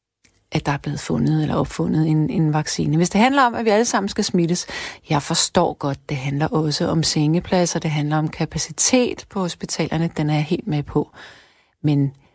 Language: Danish